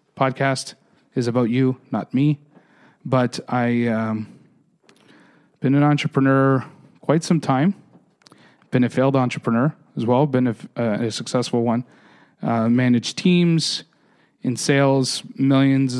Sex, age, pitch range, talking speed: male, 30-49, 125-140 Hz, 125 wpm